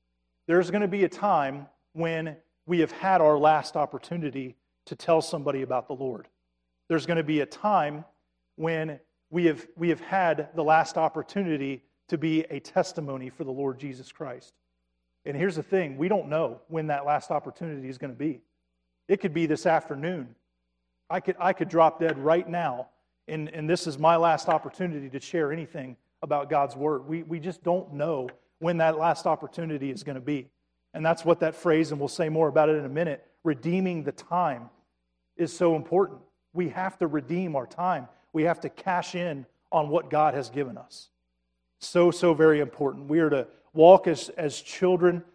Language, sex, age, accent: English, male, 40-59, American